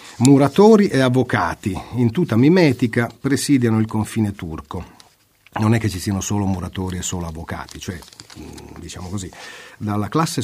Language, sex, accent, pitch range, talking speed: Italian, male, native, 105-140 Hz, 145 wpm